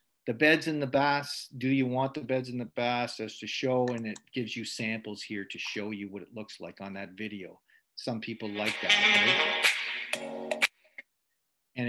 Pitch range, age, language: 115-150 Hz, 50-69, English